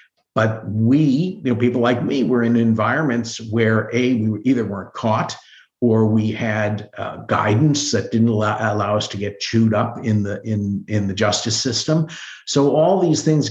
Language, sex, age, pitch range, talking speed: English, male, 50-69, 110-140 Hz, 180 wpm